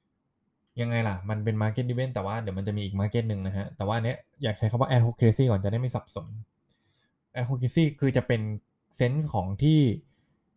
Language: Thai